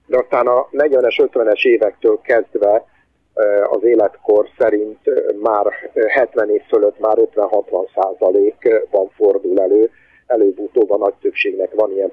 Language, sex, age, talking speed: Hungarian, male, 50-69, 120 wpm